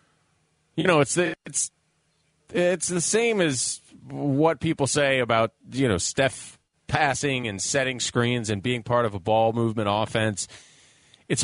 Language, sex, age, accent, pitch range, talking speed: English, male, 30-49, American, 105-140 Hz, 150 wpm